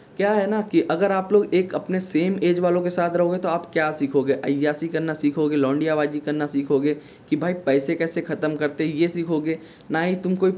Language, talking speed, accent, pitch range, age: Hindi, 210 wpm, native, 145-175 Hz, 20-39